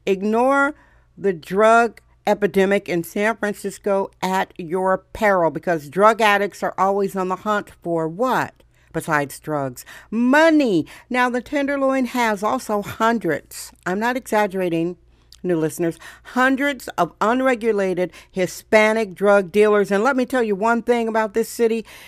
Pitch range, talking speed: 180-230 Hz, 135 wpm